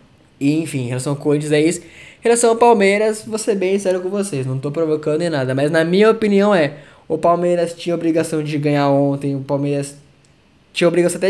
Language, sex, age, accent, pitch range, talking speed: Portuguese, male, 10-29, Brazilian, 150-200 Hz, 190 wpm